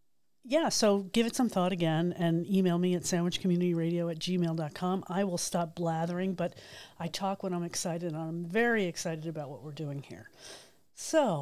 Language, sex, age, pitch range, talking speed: English, female, 40-59, 165-205 Hz, 180 wpm